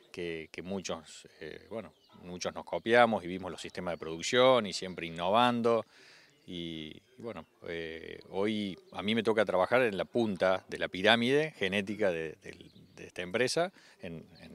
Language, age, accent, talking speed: Spanish, 30-49, Argentinian, 165 wpm